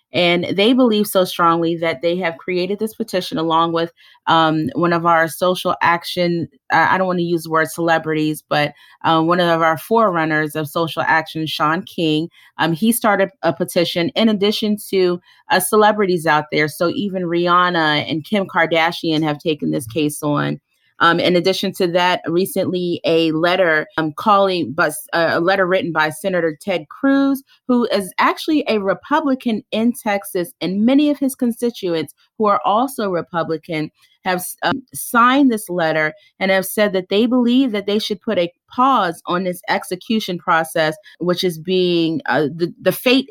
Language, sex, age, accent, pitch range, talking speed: English, female, 30-49, American, 160-200 Hz, 170 wpm